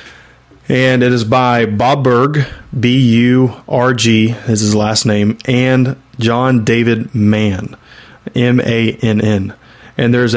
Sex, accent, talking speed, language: male, American, 105 wpm, English